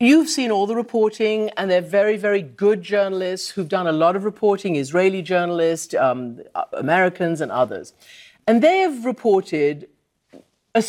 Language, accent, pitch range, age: English, British, 170-215 Hz, 50-69